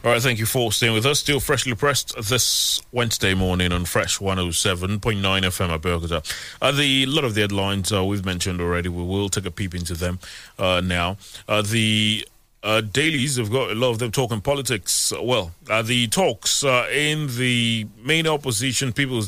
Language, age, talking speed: English, 30-49, 195 wpm